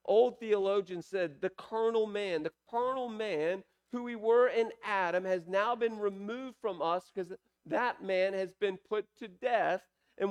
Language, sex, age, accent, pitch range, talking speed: English, male, 40-59, American, 155-205 Hz, 170 wpm